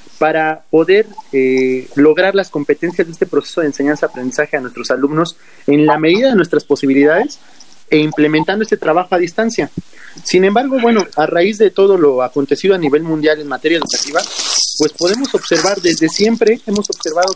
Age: 30-49